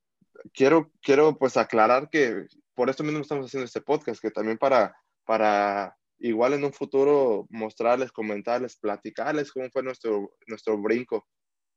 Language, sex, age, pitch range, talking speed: Spanish, male, 20-39, 110-140 Hz, 145 wpm